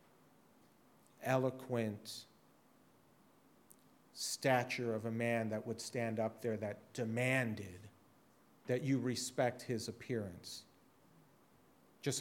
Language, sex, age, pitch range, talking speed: English, male, 40-59, 110-125 Hz, 90 wpm